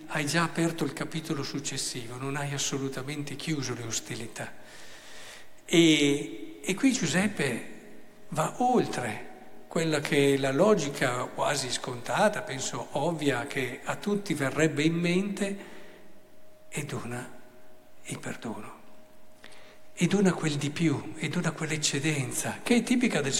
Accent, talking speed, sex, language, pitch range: native, 125 wpm, male, Italian, 125-160 Hz